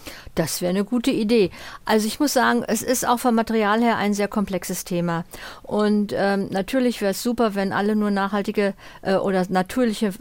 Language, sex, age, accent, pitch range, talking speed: German, female, 50-69, German, 185-220 Hz, 190 wpm